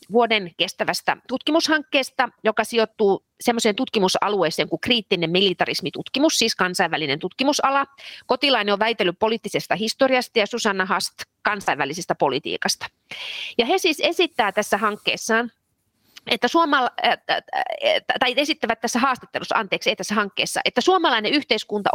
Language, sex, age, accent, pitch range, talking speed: Finnish, female, 30-49, native, 200-270 Hz, 115 wpm